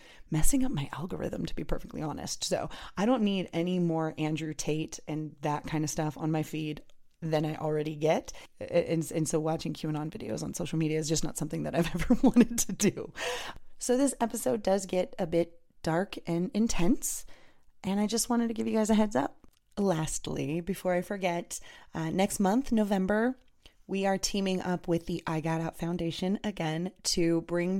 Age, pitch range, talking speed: 20-39, 160-195 Hz, 190 wpm